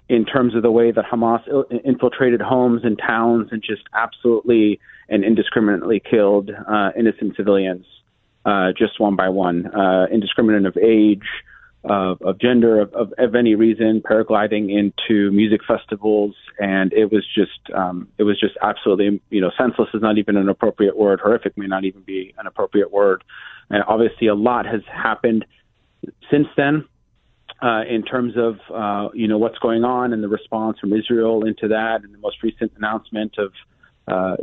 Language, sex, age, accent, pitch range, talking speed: English, male, 30-49, American, 105-115 Hz, 175 wpm